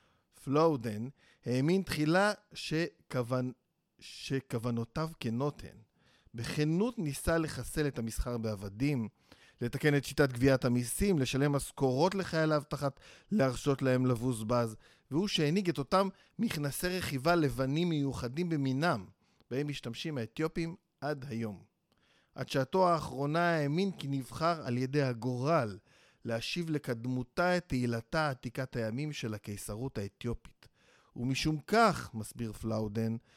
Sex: male